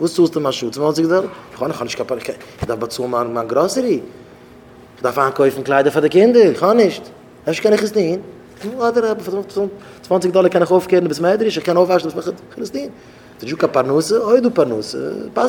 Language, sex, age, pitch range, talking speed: English, male, 30-49, 135-185 Hz, 50 wpm